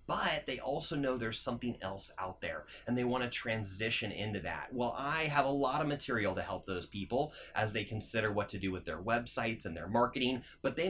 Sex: male